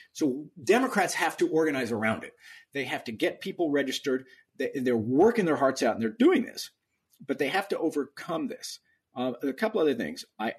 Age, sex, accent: 50-69, male, American